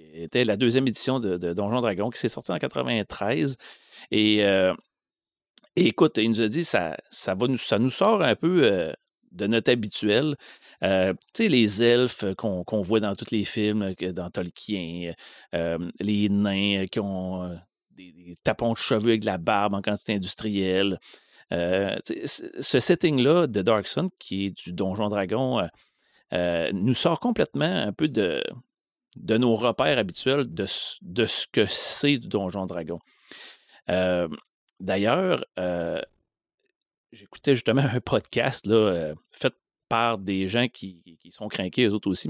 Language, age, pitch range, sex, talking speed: French, 30-49, 95-120 Hz, male, 165 wpm